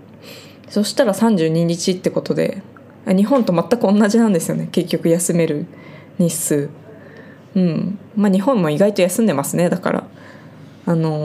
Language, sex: Japanese, female